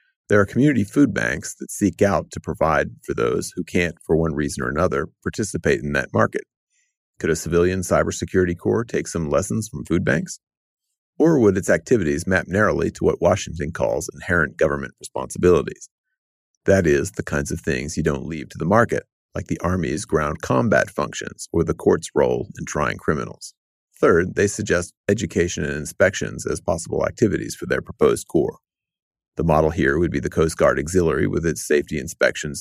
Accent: American